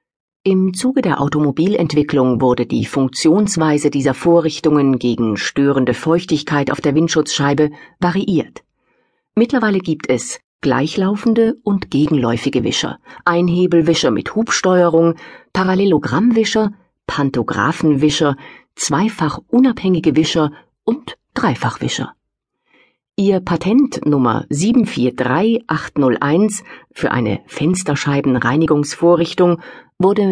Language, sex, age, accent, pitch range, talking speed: German, female, 50-69, German, 140-185 Hz, 80 wpm